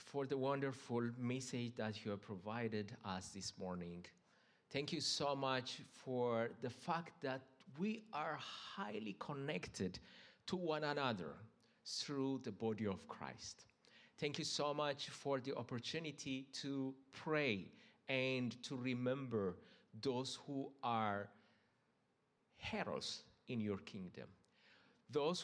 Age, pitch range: 50-69, 120-160 Hz